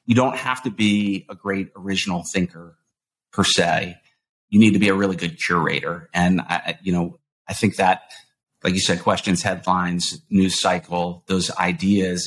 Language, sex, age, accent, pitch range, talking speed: English, male, 30-49, American, 95-135 Hz, 165 wpm